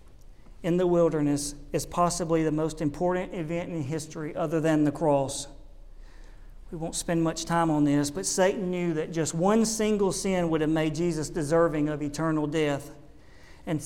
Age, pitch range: 50-69, 150-175 Hz